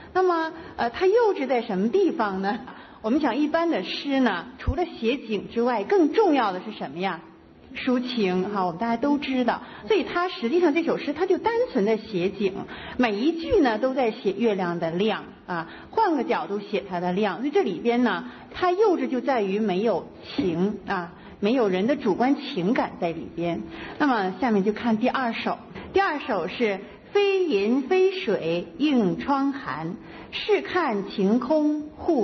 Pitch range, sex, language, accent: 195-315 Hz, female, Chinese, native